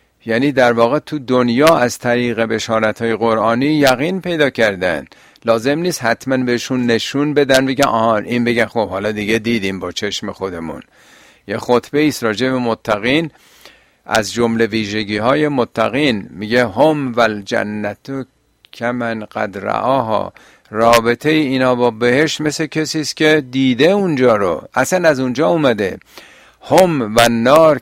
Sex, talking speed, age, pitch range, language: male, 135 wpm, 50-69, 115-145 Hz, Persian